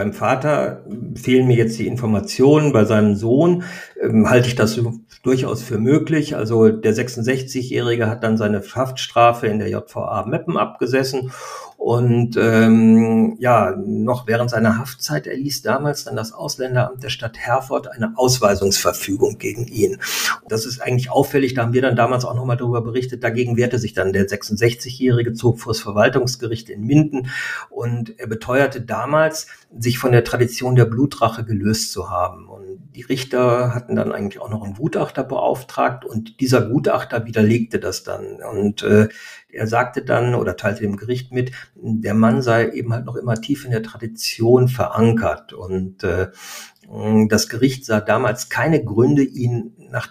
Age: 50-69